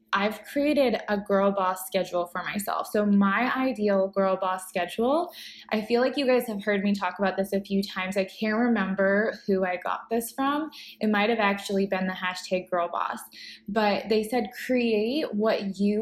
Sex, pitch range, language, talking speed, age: female, 185-220 Hz, English, 185 wpm, 20-39